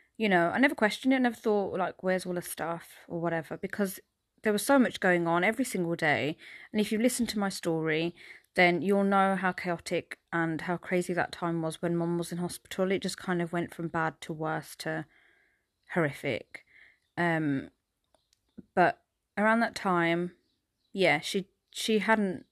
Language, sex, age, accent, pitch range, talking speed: English, female, 30-49, British, 165-210 Hz, 185 wpm